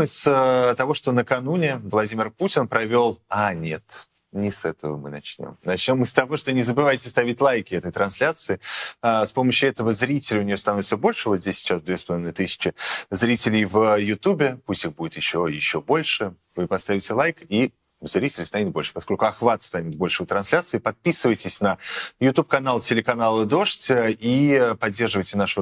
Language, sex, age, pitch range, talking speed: Russian, male, 30-49, 95-125 Hz, 165 wpm